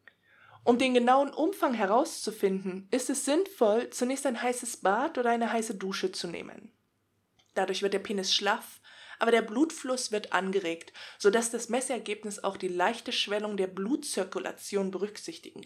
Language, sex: German, female